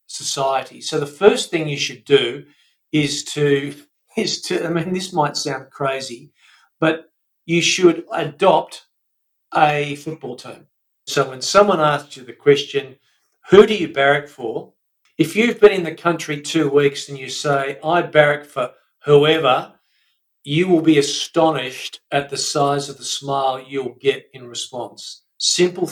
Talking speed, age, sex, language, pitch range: 155 wpm, 50-69, male, English, 140-170 Hz